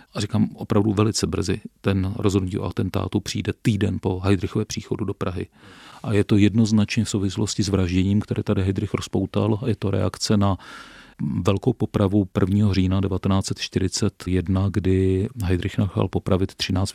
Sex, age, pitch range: male, 40-59, 95-105 Hz